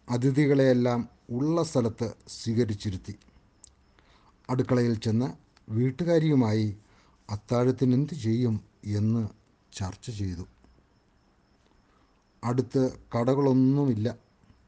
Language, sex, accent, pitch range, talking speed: Malayalam, male, native, 110-145 Hz, 55 wpm